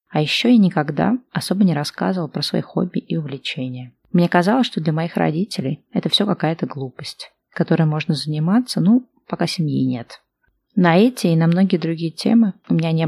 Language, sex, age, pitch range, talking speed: Russian, female, 20-39, 145-200 Hz, 180 wpm